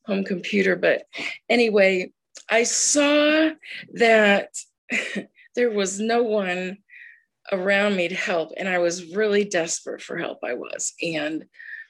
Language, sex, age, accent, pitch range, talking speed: English, female, 40-59, American, 185-230 Hz, 125 wpm